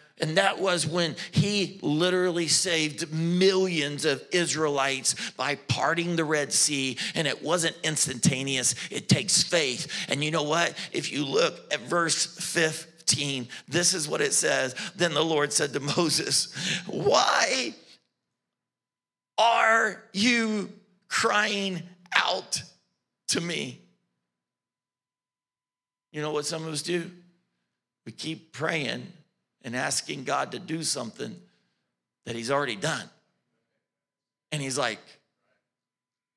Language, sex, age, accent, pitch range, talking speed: English, male, 50-69, American, 145-205 Hz, 120 wpm